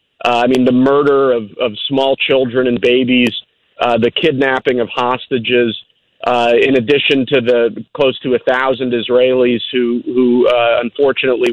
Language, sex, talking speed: English, male, 150 wpm